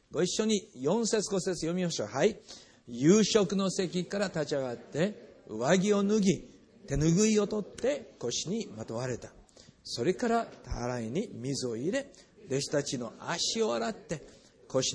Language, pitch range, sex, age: Japanese, 125-205 Hz, male, 50-69